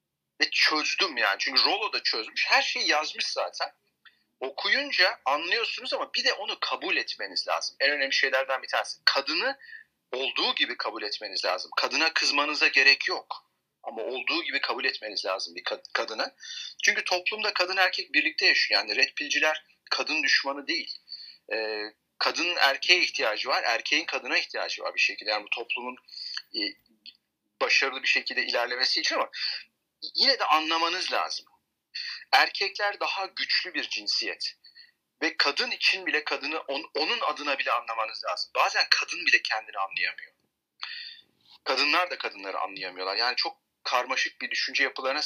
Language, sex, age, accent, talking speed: Turkish, male, 40-59, native, 140 wpm